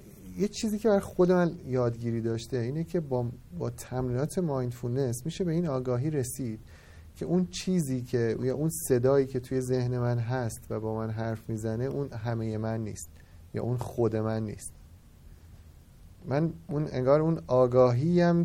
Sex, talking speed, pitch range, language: male, 165 wpm, 115-165 Hz, Persian